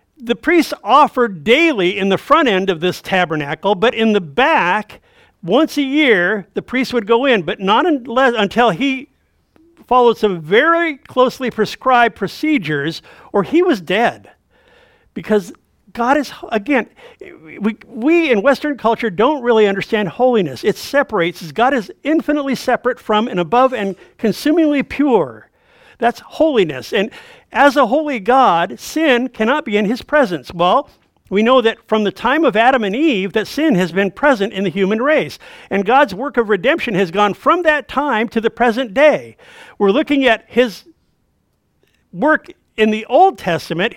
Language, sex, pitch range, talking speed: English, male, 205-285 Hz, 160 wpm